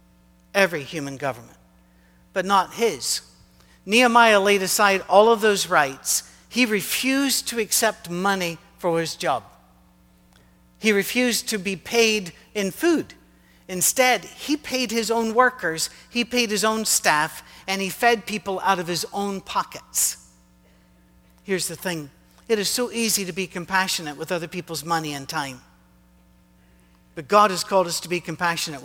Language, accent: English, American